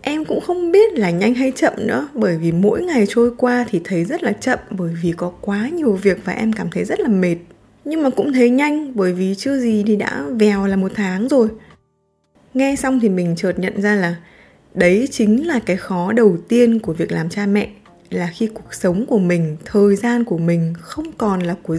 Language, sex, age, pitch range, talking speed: Vietnamese, female, 20-39, 180-240 Hz, 230 wpm